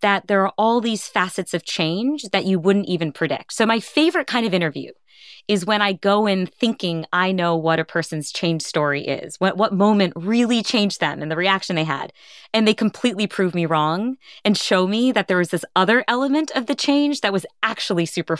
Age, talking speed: 20-39, 215 wpm